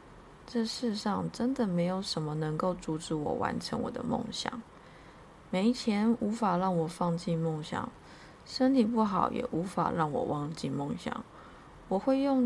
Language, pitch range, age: Chinese, 170-220 Hz, 20-39